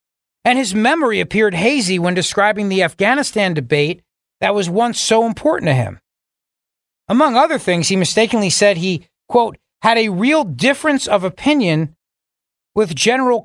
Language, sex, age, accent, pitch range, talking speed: English, male, 40-59, American, 175-240 Hz, 145 wpm